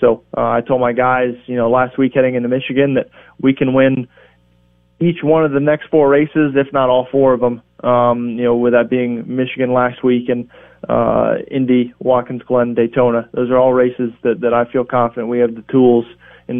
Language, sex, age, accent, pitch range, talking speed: English, male, 20-39, American, 120-130 Hz, 215 wpm